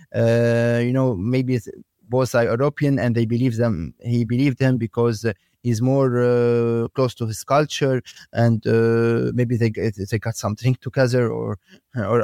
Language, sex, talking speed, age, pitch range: English, male, 145 wpm, 30-49, 115-130 Hz